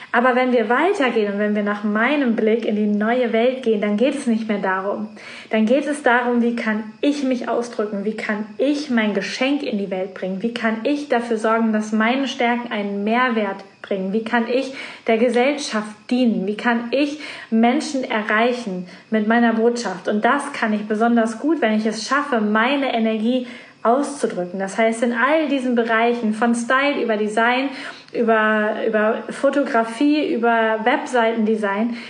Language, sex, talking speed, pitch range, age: German, female, 170 wpm, 220-250 Hz, 20-39